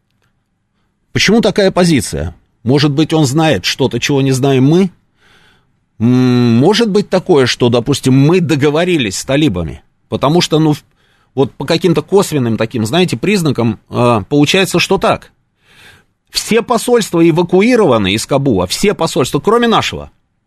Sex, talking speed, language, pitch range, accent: male, 125 wpm, Russian, 125-180 Hz, native